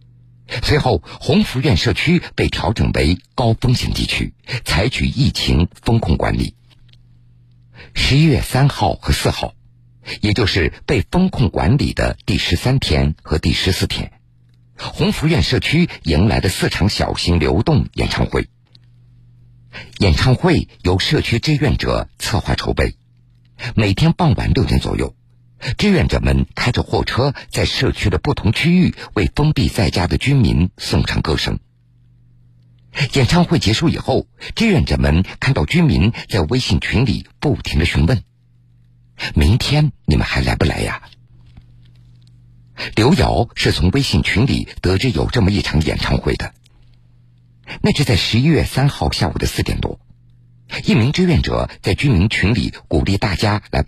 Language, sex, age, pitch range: Chinese, male, 50-69, 85-125 Hz